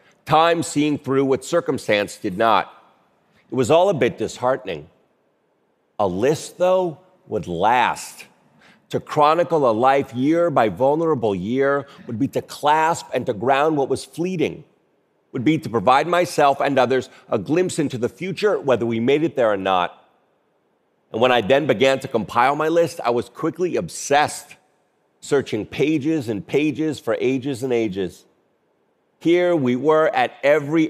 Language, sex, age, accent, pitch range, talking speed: English, male, 40-59, American, 130-160 Hz, 155 wpm